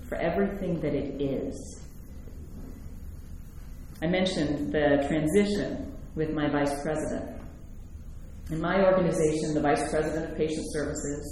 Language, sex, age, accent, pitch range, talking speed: English, female, 40-59, American, 140-180 Hz, 115 wpm